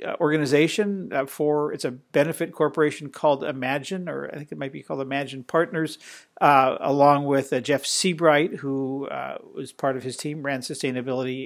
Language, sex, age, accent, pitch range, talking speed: English, male, 60-79, American, 130-155 Hz, 170 wpm